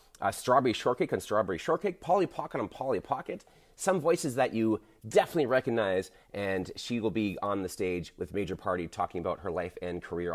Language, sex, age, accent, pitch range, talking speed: English, male, 30-49, American, 100-155 Hz, 190 wpm